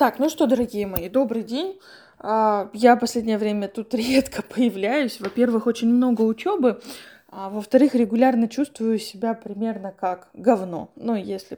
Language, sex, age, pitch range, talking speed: Russian, female, 20-39, 205-265 Hz, 140 wpm